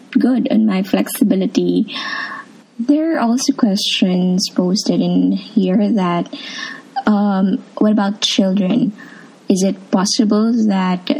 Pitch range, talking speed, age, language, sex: 200-260 Hz, 105 wpm, 20-39, English, female